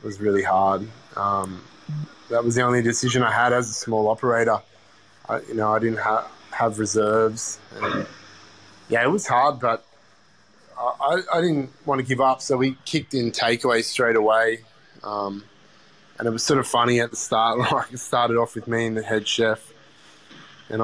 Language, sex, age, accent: English, male, 20-39, Australian